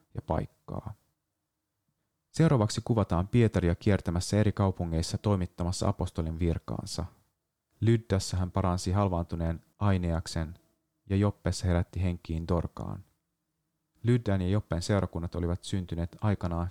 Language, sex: Finnish, male